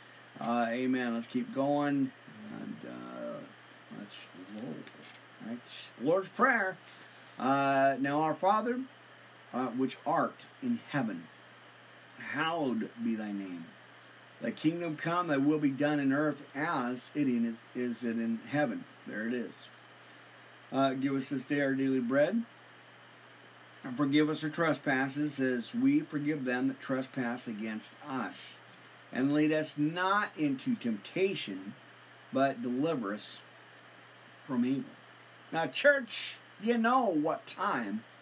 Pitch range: 130-190 Hz